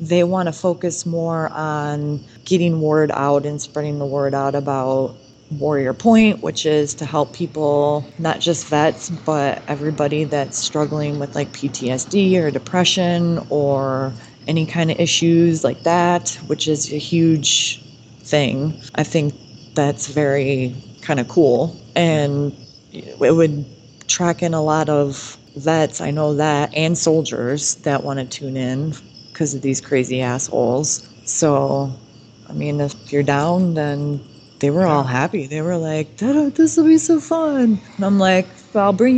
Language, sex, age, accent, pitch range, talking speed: English, female, 20-39, American, 140-165 Hz, 155 wpm